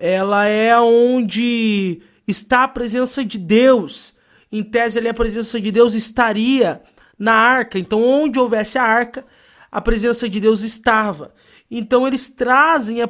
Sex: male